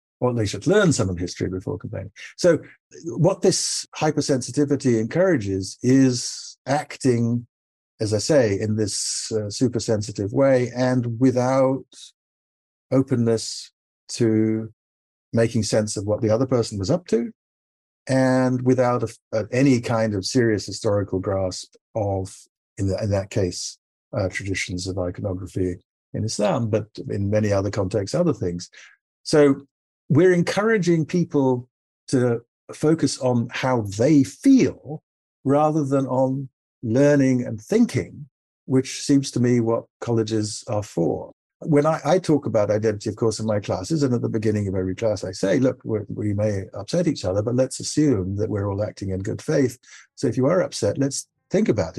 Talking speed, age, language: 155 wpm, 50-69, English